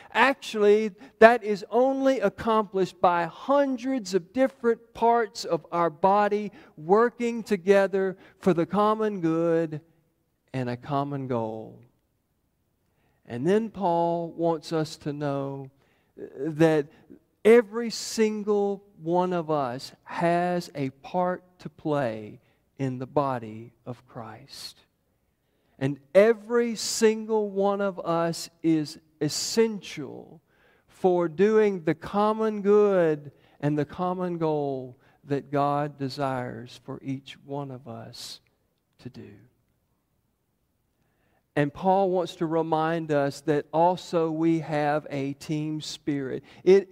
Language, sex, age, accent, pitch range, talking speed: English, male, 50-69, American, 150-205 Hz, 110 wpm